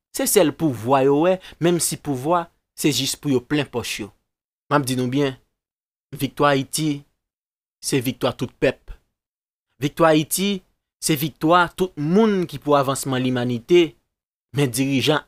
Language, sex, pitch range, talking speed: French, male, 130-165 Hz, 150 wpm